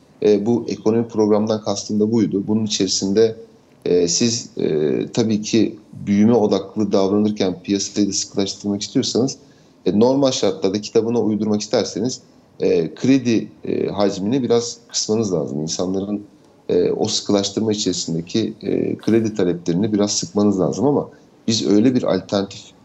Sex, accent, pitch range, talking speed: male, native, 100-120 Hz, 130 wpm